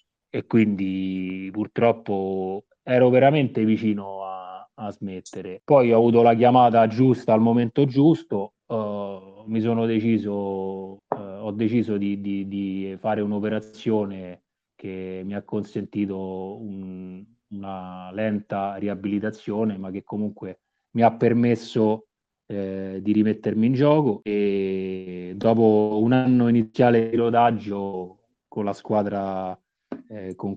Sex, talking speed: male, 120 wpm